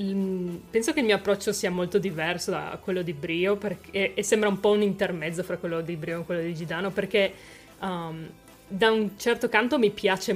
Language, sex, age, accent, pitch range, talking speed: Italian, female, 20-39, native, 170-205 Hz, 190 wpm